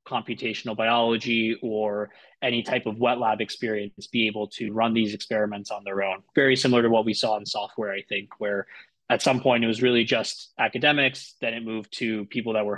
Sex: male